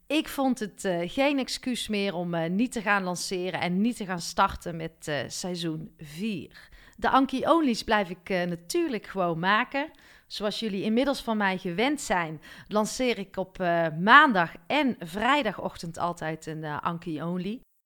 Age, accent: 40-59, Dutch